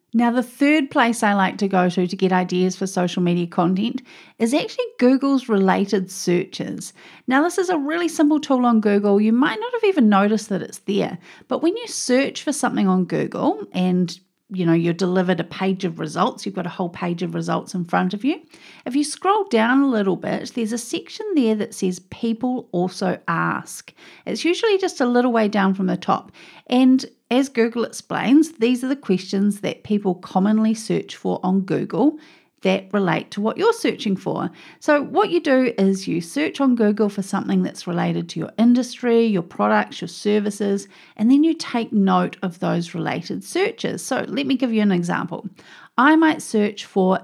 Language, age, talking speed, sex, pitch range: English, 40-59, 195 wpm, female, 190-265 Hz